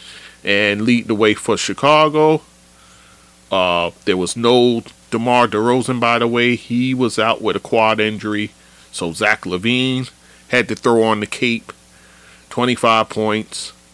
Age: 40-59